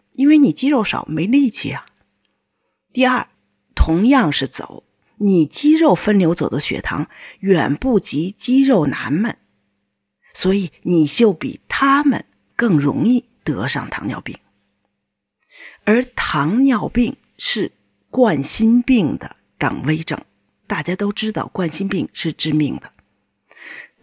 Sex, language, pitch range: female, Chinese, 170-260 Hz